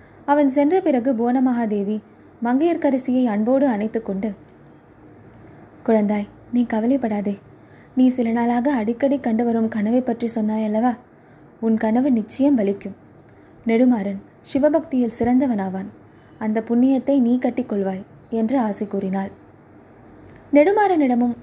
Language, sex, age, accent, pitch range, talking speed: Tamil, female, 20-39, native, 220-275 Hz, 100 wpm